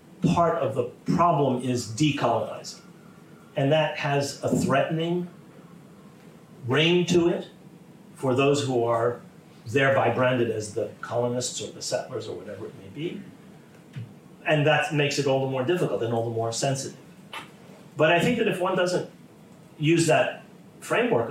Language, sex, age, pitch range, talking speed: English, male, 40-59, 120-170 Hz, 150 wpm